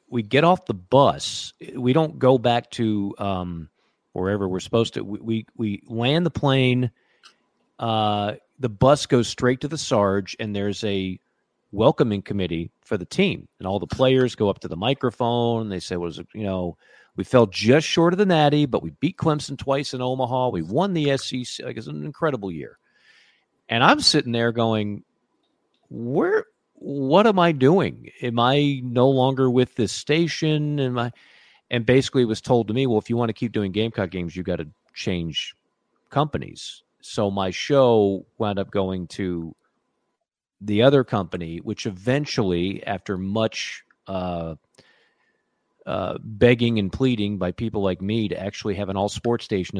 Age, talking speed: 40-59, 175 wpm